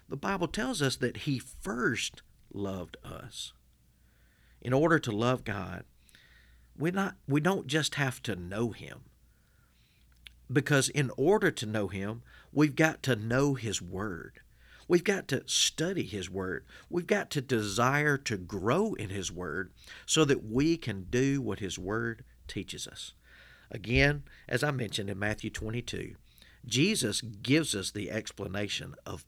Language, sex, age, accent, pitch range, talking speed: English, male, 50-69, American, 95-135 Hz, 145 wpm